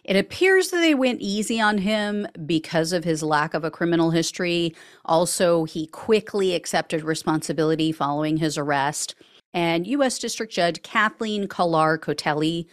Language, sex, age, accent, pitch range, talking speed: English, female, 40-59, American, 160-215 Hz, 145 wpm